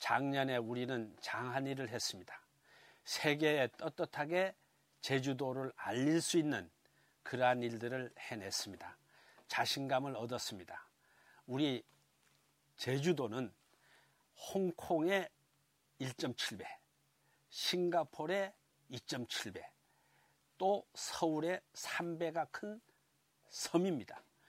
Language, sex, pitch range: Korean, male, 125-170 Hz